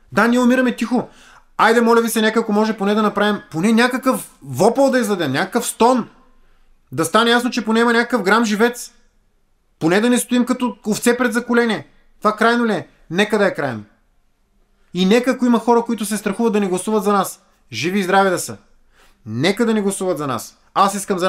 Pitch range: 175-220 Hz